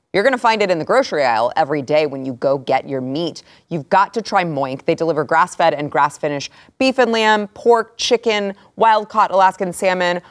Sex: female